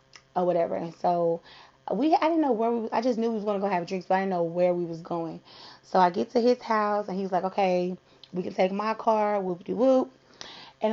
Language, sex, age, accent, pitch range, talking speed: English, female, 30-49, American, 180-230 Hz, 245 wpm